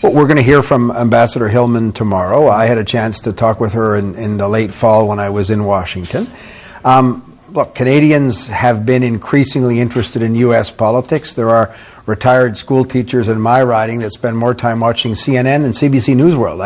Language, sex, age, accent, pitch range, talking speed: English, male, 60-79, American, 115-135 Hz, 195 wpm